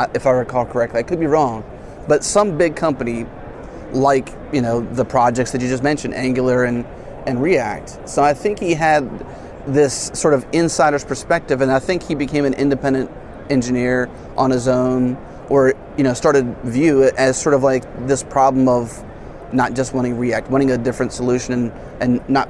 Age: 30-49